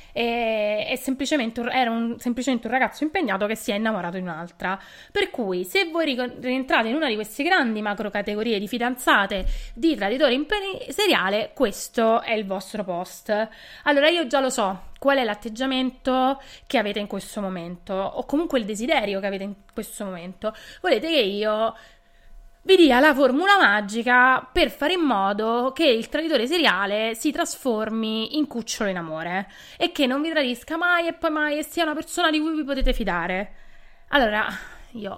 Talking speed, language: 170 wpm, Italian